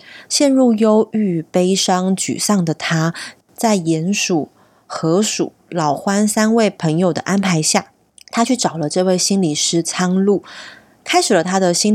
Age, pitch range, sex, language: 20-39, 170-230 Hz, female, Chinese